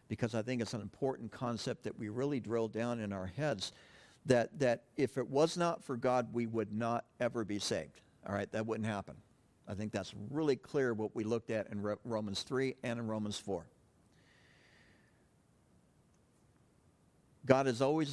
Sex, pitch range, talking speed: male, 110-135 Hz, 180 wpm